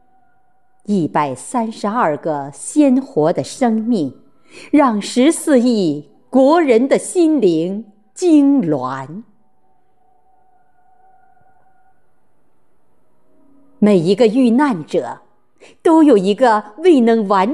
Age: 50-69